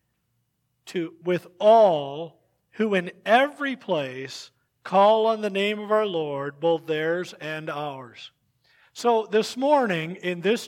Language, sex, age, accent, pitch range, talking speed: English, male, 50-69, American, 155-195 Hz, 130 wpm